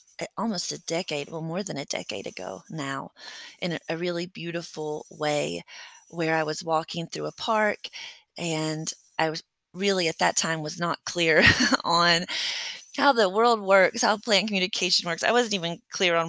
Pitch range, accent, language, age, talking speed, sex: 165-220 Hz, American, English, 20-39, 170 wpm, female